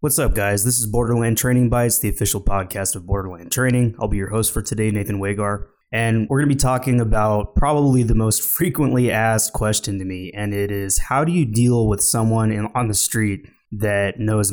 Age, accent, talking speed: 20-39, American, 210 wpm